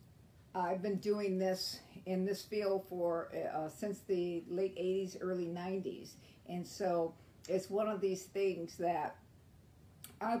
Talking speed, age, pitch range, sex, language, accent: 140 wpm, 50-69, 185-210 Hz, female, English, American